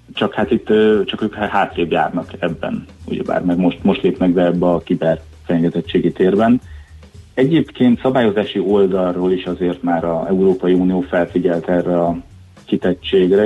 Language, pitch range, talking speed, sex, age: Hungarian, 85-100 Hz, 145 wpm, male, 30-49